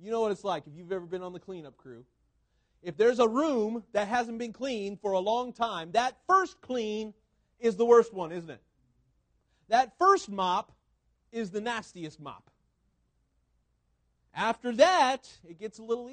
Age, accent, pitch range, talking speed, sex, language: 40-59, American, 155-235 Hz, 175 wpm, male, English